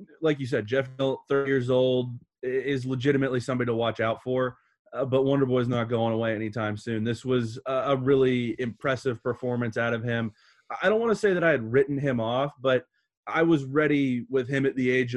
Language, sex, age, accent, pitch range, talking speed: English, male, 20-39, American, 115-135 Hz, 200 wpm